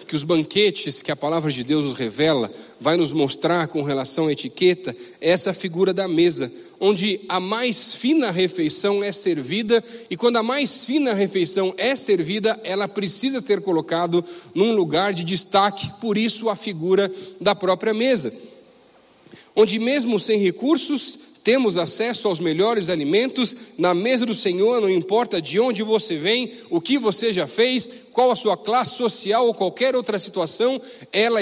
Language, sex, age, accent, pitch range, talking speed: Portuguese, male, 40-59, Brazilian, 185-235 Hz, 165 wpm